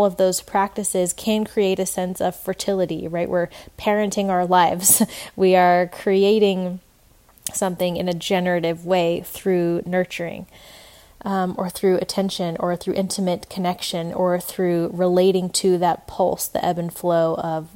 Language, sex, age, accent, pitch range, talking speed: English, female, 10-29, American, 175-195 Hz, 145 wpm